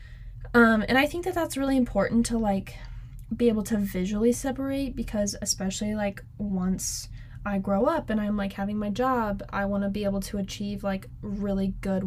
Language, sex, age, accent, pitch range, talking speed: English, female, 10-29, American, 195-230 Hz, 190 wpm